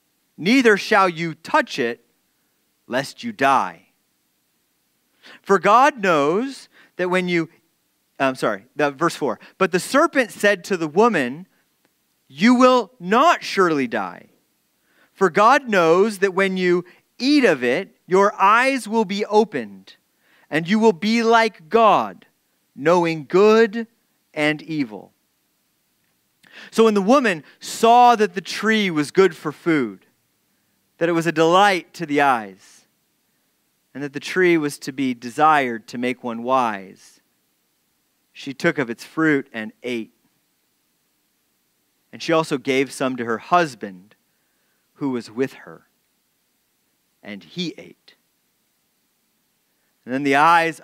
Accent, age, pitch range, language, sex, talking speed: American, 40-59, 145-220 Hz, English, male, 130 wpm